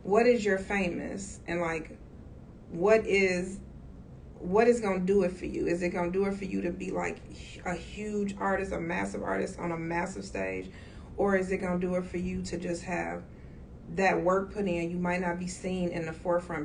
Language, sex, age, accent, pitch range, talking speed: English, female, 30-49, American, 160-190 Hz, 220 wpm